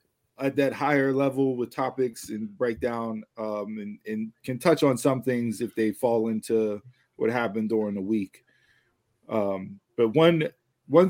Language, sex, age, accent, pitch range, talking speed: English, male, 20-39, American, 110-135 Hz, 155 wpm